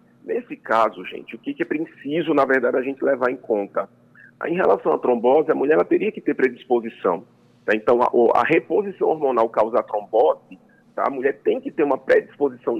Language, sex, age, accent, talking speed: Portuguese, male, 40-59, Brazilian, 190 wpm